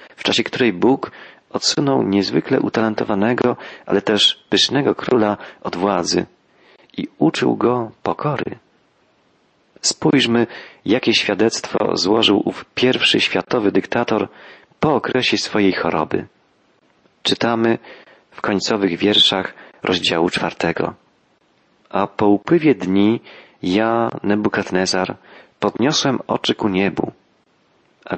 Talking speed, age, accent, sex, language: 100 wpm, 40-59, native, male, Polish